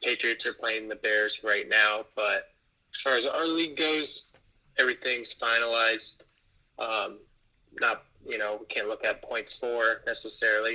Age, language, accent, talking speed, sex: 20-39, English, American, 150 wpm, male